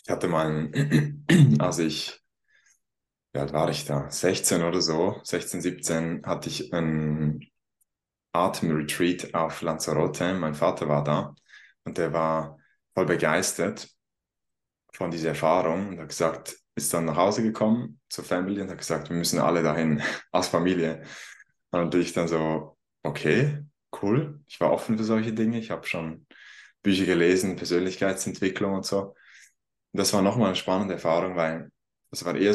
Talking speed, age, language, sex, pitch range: 155 wpm, 20-39, German, male, 80-100 Hz